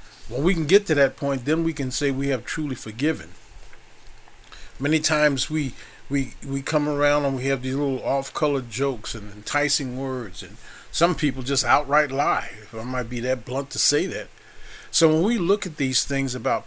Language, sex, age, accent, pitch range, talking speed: English, male, 40-59, American, 130-155 Hz, 200 wpm